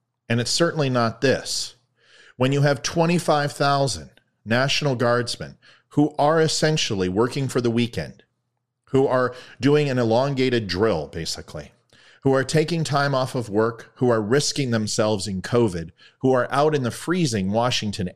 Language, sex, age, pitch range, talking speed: English, male, 40-59, 105-135 Hz, 150 wpm